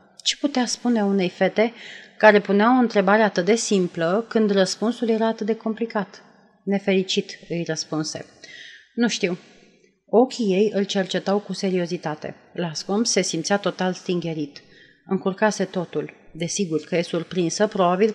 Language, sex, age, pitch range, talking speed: Romanian, female, 30-49, 180-225 Hz, 135 wpm